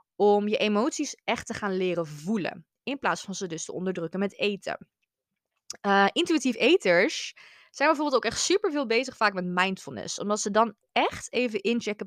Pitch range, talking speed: 190-255 Hz, 180 wpm